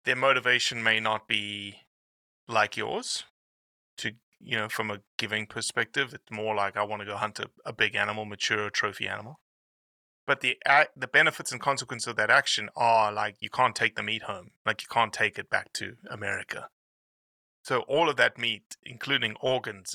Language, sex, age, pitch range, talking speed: English, male, 20-39, 100-125 Hz, 190 wpm